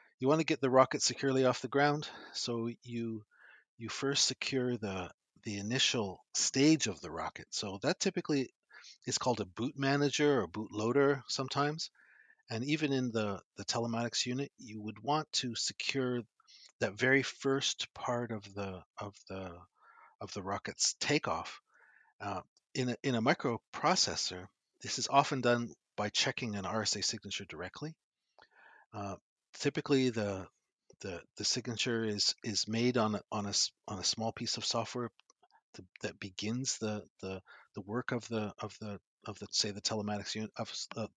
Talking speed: 165 wpm